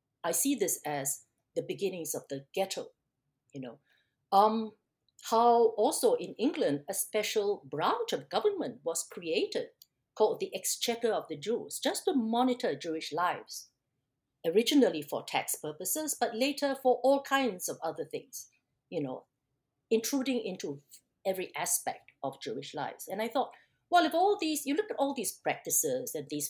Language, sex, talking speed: English, female, 160 wpm